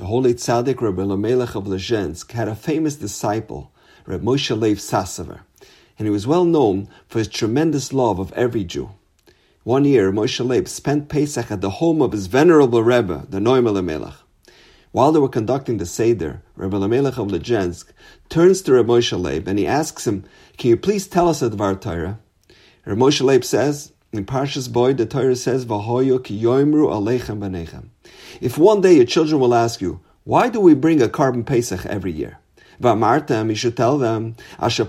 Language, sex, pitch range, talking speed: English, male, 105-155 Hz, 175 wpm